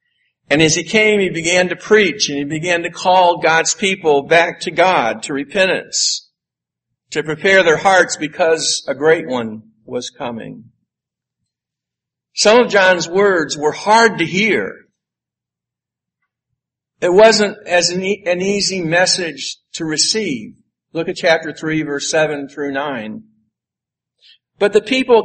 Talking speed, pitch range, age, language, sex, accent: 135 wpm, 135-195 Hz, 60-79, English, male, American